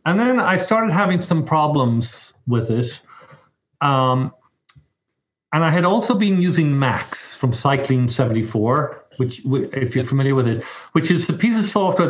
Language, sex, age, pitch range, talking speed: English, male, 50-69, 130-155 Hz, 155 wpm